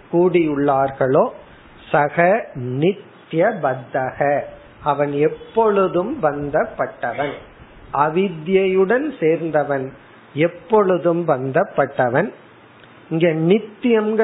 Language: Tamil